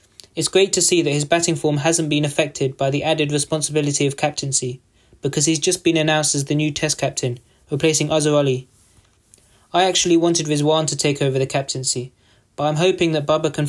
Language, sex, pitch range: English, male, 135-165 Hz